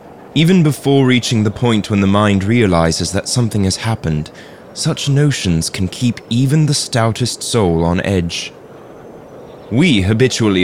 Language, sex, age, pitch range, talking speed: English, male, 20-39, 90-120 Hz, 140 wpm